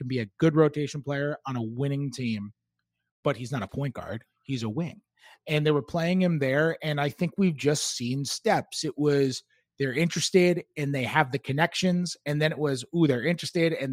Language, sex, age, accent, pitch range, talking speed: English, male, 30-49, American, 135-165 Hz, 210 wpm